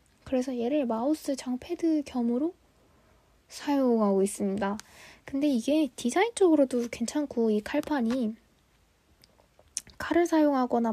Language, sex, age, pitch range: Korean, female, 20-39, 215-285 Hz